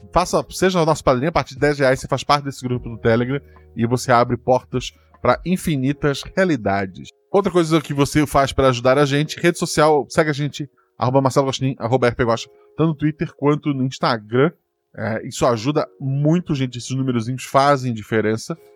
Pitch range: 120-150 Hz